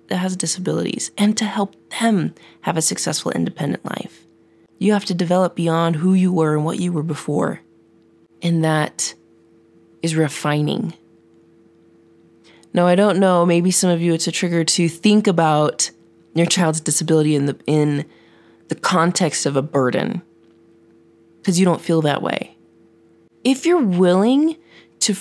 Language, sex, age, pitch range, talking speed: English, female, 20-39, 115-180 Hz, 150 wpm